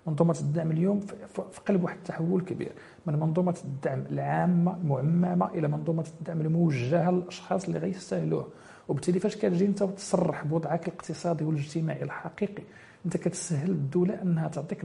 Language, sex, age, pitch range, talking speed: French, male, 40-59, 165-190 Hz, 135 wpm